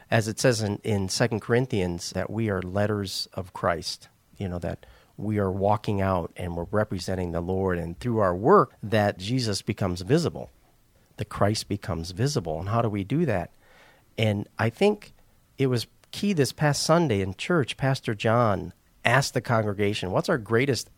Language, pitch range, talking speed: English, 100-130 Hz, 175 wpm